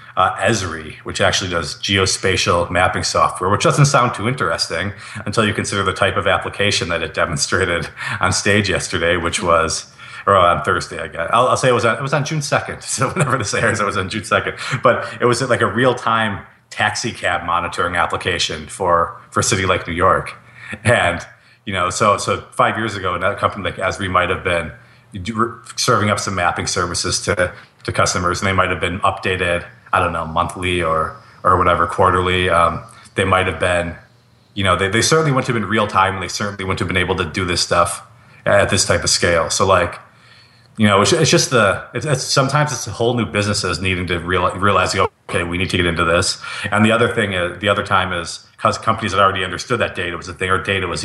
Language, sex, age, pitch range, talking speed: English, male, 30-49, 90-115 Hz, 220 wpm